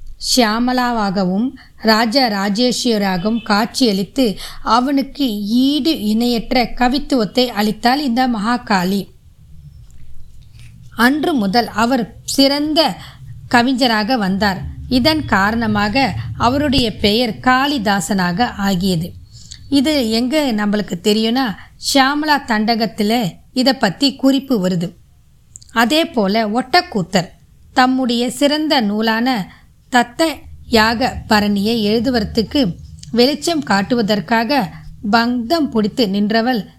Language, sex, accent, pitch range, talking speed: Tamil, female, native, 210-260 Hz, 75 wpm